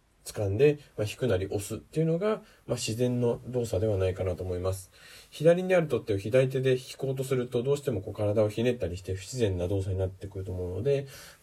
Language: Japanese